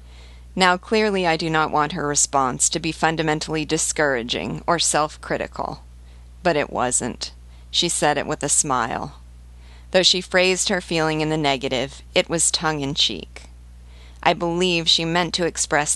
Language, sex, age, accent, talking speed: English, female, 40-59, American, 150 wpm